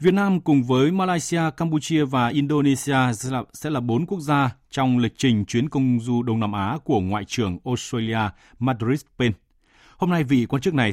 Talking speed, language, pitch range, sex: 185 wpm, Vietnamese, 110-150 Hz, male